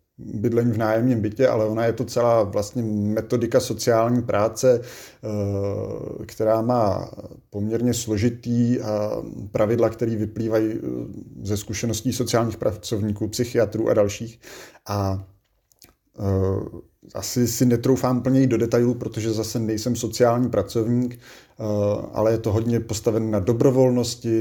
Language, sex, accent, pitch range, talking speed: Czech, male, native, 105-120 Hz, 115 wpm